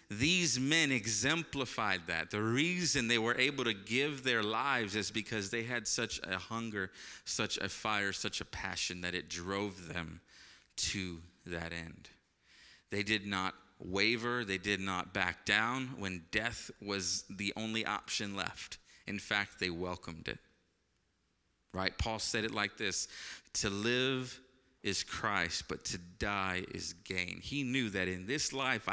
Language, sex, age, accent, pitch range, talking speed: English, male, 30-49, American, 95-120 Hz, 155 wpm